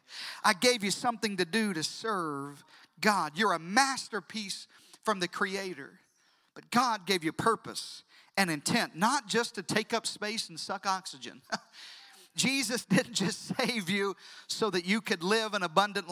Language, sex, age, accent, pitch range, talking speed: English, male, 40-59, American, 155-195 Hz, 160 wpm